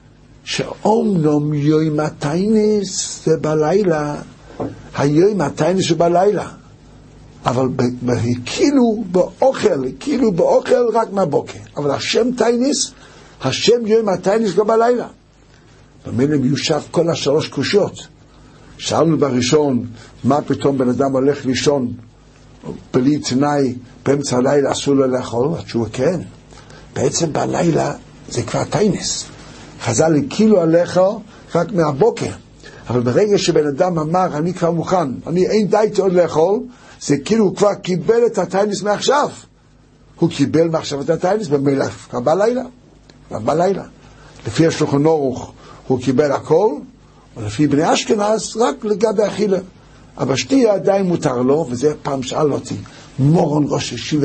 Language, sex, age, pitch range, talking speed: Hebrew, male, 60-79, 135-195 Hz, 125 wpm